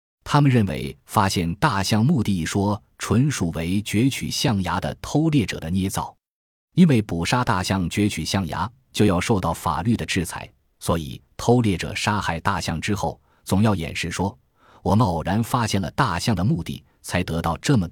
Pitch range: 85-110 Hz